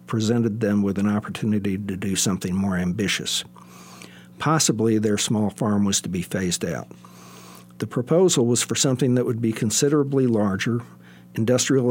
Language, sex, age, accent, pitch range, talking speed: English, male, 60-79, American, 90-120 Hz, 150 wpm